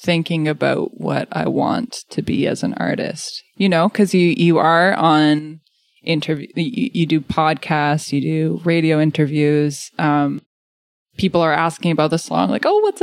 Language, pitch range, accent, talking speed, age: English, 150-185 Hz, American, 165 wpm, 20-39